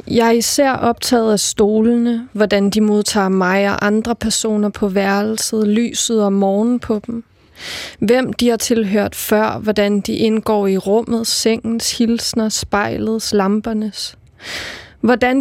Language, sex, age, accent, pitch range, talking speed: Danish, female, 20-39, native, 210-235 Hz, 135 wpm